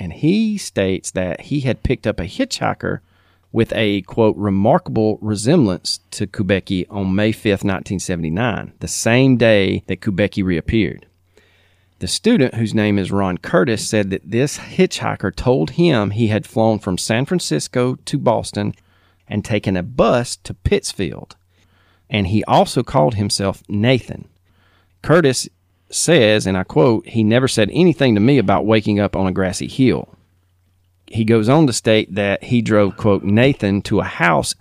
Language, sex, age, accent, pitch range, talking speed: English, male, 40-59, American, 95-115 Hz, 160 wpm